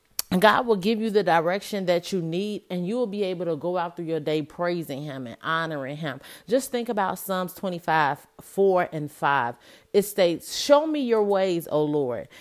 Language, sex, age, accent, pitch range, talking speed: English, female, 40-59, American, 165-215 Hz, 200 wpm